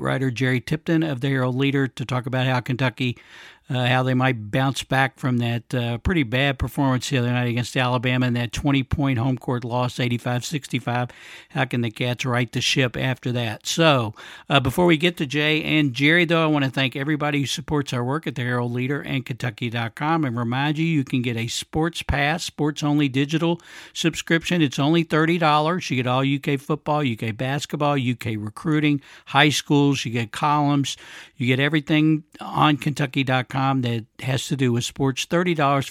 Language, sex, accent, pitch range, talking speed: English, male, American, 125-150 Hz, 185 wpm